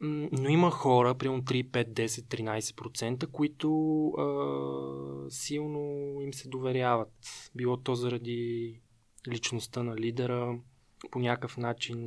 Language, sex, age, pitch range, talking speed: Bulgarian, male, 20-39, 120-140 Hz, 115 wpm